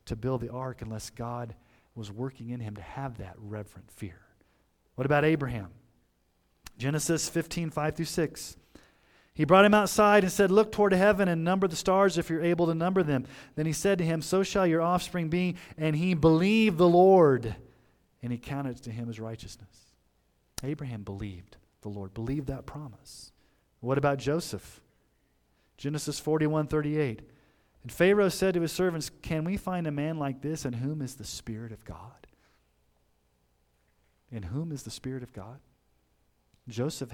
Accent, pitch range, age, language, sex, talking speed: American, 115-170 Hz, 40-59, English, male, 175 wpm